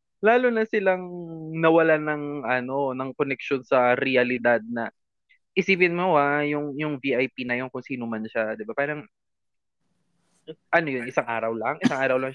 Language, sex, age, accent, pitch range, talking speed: Filipino, male, 20-39, native, 125-155 Hz, 165 wpm